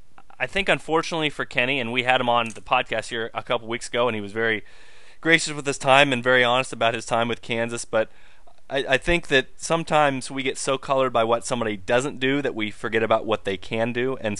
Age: 30-49